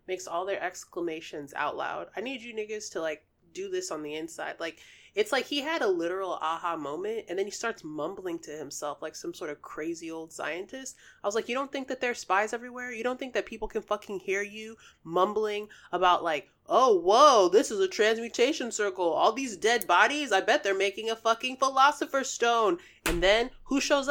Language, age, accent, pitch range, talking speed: English, 20-39, American, 170-270 Hz, 215 wpm